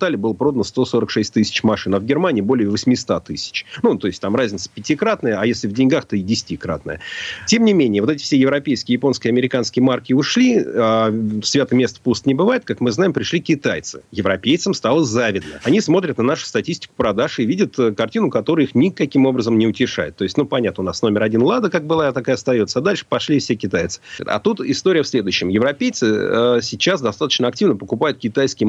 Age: 40-59